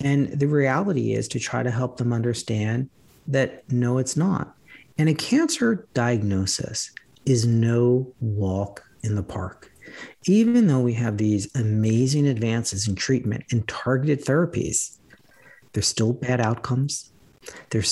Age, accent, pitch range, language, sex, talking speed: 40-59, American, 110-140 Hz, English, male, 135 wpm